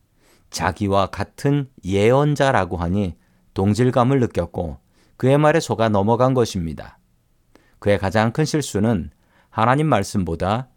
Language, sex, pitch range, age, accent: Korean, male, 95-125 Hz, 40-59, native